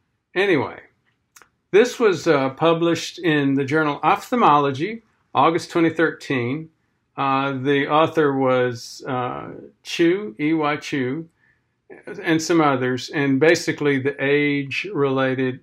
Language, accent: English, American